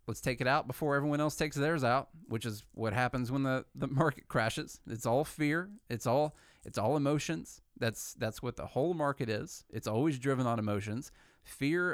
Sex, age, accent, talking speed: male, 30-49, American, 200 wpm